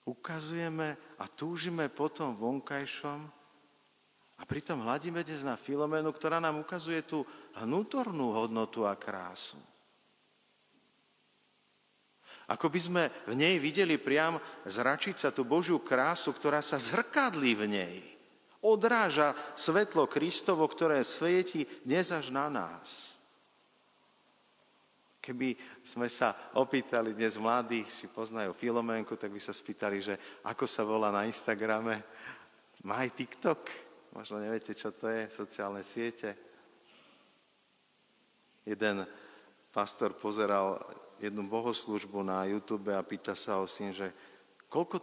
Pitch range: 105-155 Hz